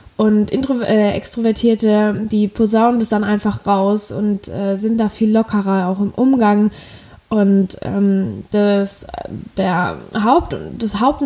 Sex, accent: female, German